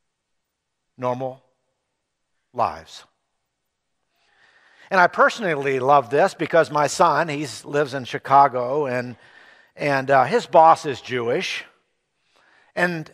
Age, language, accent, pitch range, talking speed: 50-69, English, American, 130-170 Hz, 100 wpm